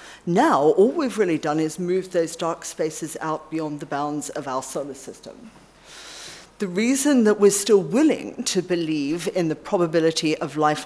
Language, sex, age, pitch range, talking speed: English, female, 40-59, 160-200 Hz, 170 wpm